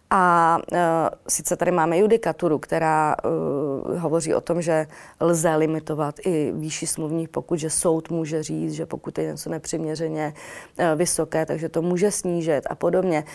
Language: Czech